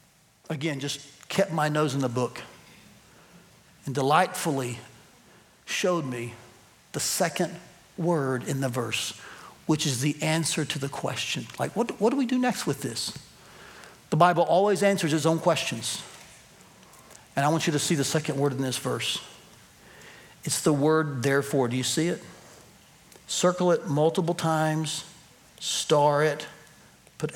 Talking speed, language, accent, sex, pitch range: 150 wpm, English, American, male, 135-175 Hz